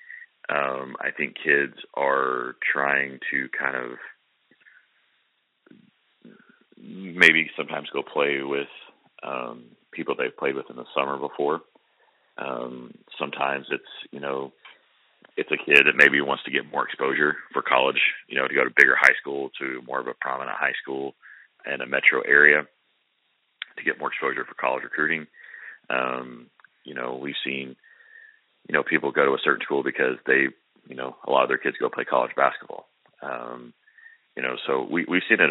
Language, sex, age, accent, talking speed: English, male, 30-49, American, 170 wpm